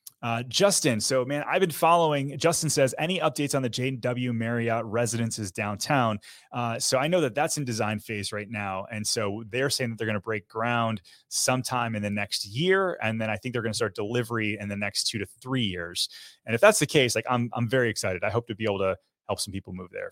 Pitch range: 105-135 Hz